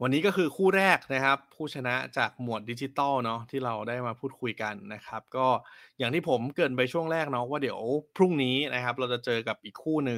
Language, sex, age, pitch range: Thai, male, 20-39, 115-135 Hz